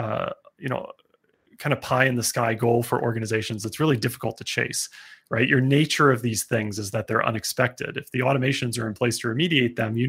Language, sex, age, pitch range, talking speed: English, male, 30-49, 115-135 Hz, 220 wpm